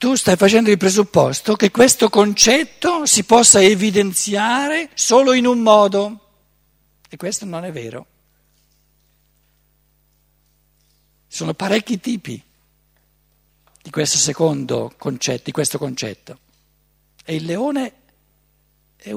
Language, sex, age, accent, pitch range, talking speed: Italian, male, 60-79, native, 150-200 Hz, 110 wpm